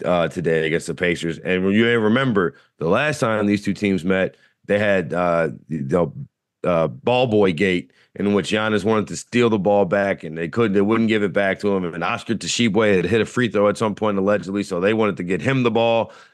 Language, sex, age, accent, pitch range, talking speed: English, male, 30-49, American, 95-115 Hz, 235 wpm